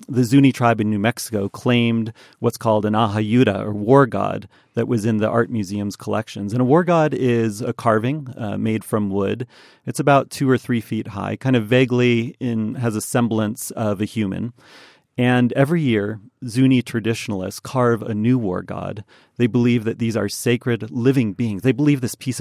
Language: English